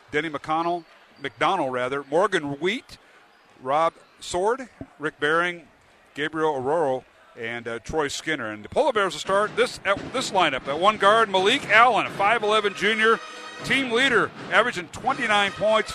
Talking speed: 145 wpm